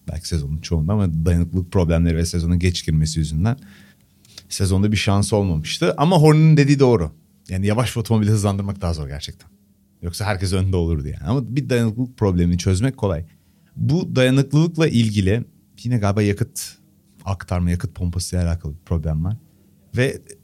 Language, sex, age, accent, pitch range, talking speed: Turkish, male, 40-59, native, 85-120 Hz, 160 wpm